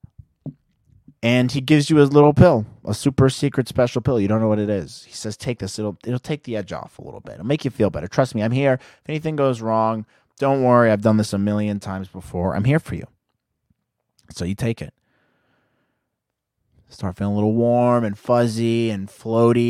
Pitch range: 105-140 Hz